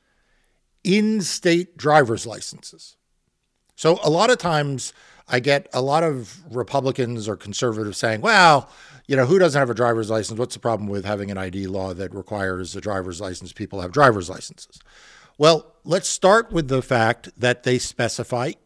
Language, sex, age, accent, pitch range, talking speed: English, male, 50-69, American, 120-170 Hz, 165 wpm